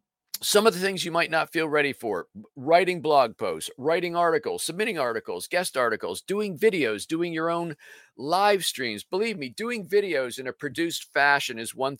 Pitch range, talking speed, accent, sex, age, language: 130-175 Hz, 180 wpm, American, male, 50-69, English